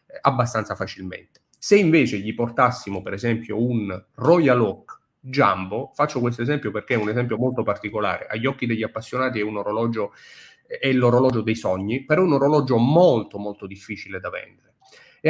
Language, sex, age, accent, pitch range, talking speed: Italian, male, 30-49, native, 110-140 Hz, 160 wpm